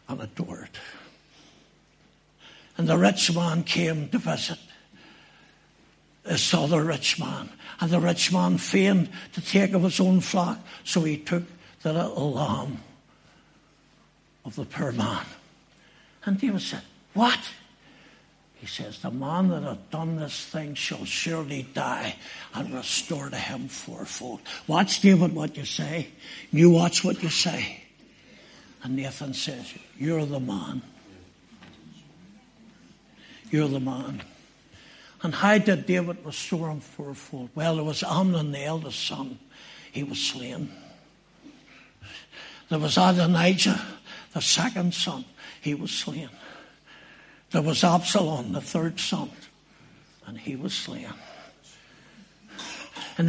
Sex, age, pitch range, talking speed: male, 60-79, 155-185 Hz, 125 wpm